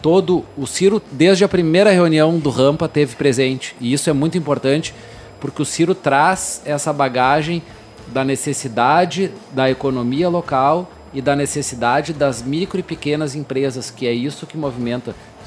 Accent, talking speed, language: Brazilian, 155 wpm, Portuguese